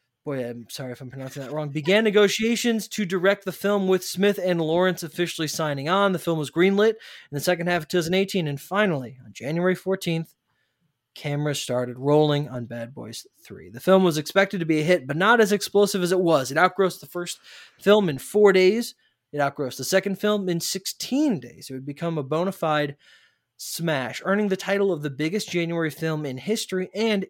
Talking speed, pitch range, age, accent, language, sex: 200 wpm, 150-195 Hz, 20-39, American, English, male